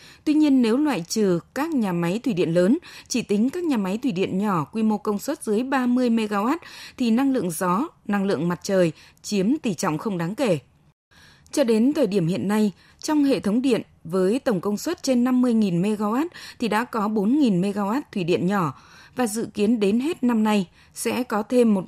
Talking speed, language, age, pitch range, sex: 205 wpm, Vietnamese, 20-39, 180-245 Hz, female